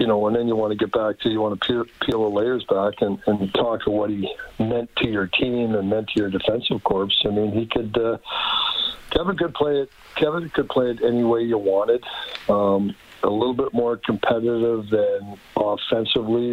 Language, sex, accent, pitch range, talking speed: English, male, American, 105-125 Hz, 215 wpm